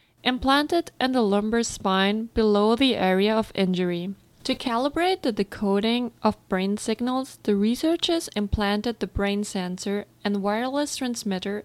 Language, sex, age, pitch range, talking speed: English, female, 20-39, 200-250 Hz, 135 wpm